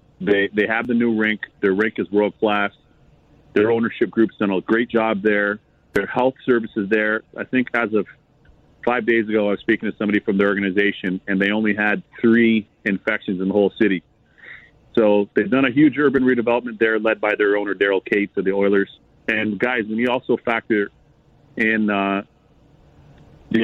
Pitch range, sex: 100-120 Hz, male